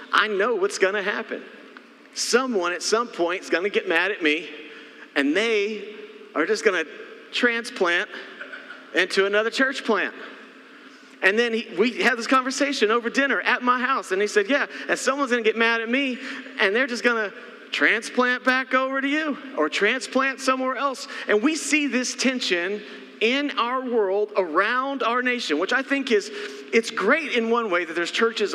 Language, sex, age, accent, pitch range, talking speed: English, male, 40-59, American, 210-265 Hz, 185 wpm